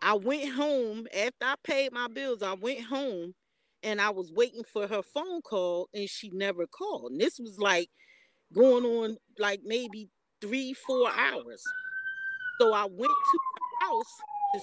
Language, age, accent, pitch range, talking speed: English, 40-59, American, 200-270 Hz, 170 wpm